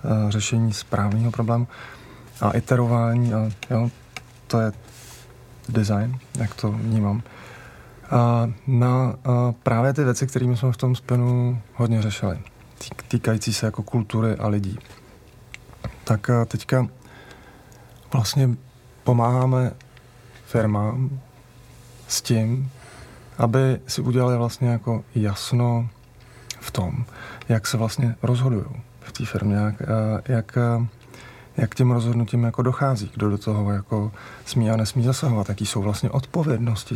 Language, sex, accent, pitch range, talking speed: Czech, male, native, 110-125 Hz, 120 wpm